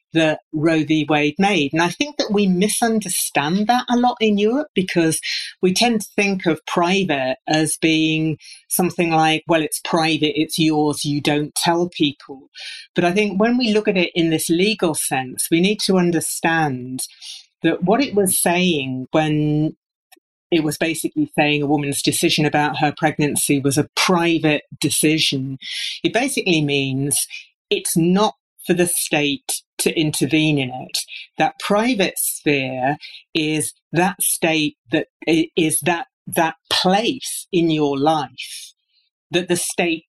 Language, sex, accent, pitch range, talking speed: English, female, British, 150-185 Hz, 150 wpm